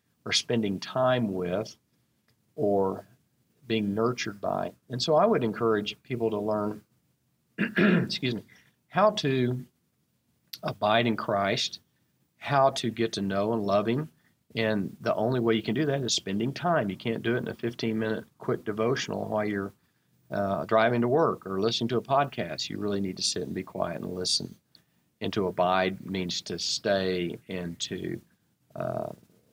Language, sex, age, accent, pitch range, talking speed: English, male, 50-69, American, 100-125 Hz, 165 wpm